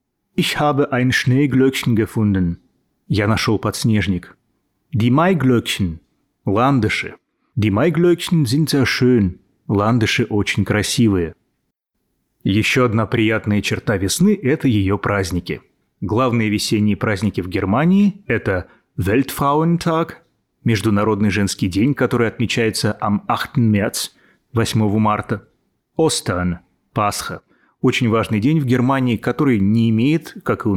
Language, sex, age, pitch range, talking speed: Russian, male, 30-49, 105-135 Hz, 120 wpm